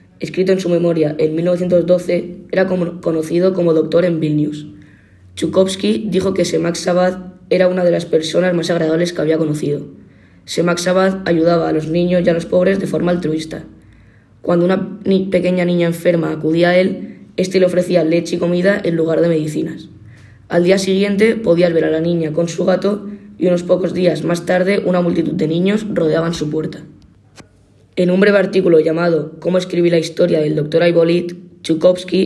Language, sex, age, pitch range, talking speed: Czech, female, 20-39, 155-180 Hz, 180 wpm